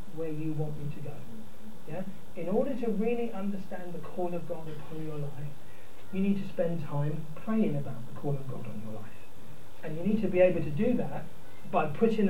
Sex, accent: male, British